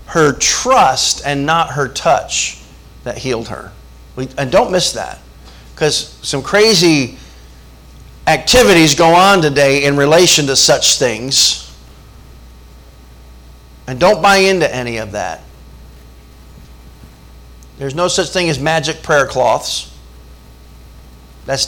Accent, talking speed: American, 115 wpm